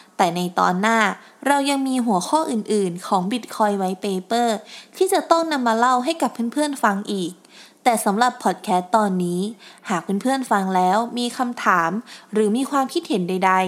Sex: female